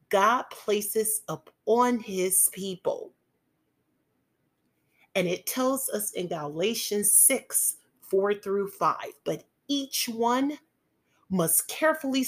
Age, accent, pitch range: 30-49, American, 190-245 Hz